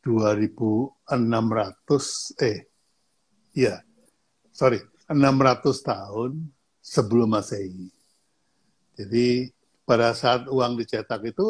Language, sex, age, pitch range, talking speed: Indonesian, male, 60-79, 115-155 Hz, 75 wpm